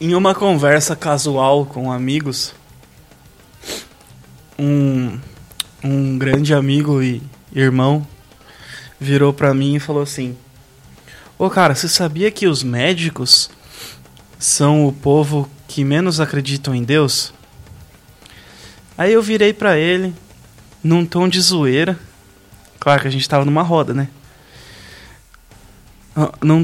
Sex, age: male, 20-39